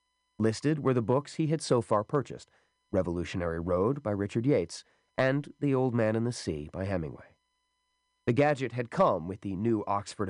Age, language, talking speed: 30-49, English, 180 wpm